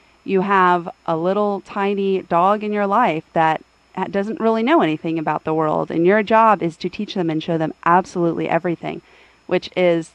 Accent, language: American, English